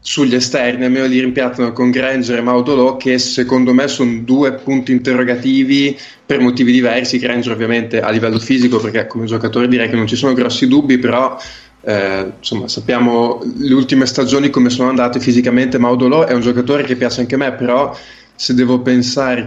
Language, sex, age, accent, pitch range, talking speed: Italian, male, 20-39, native, 115-130 Hz, 180 wpm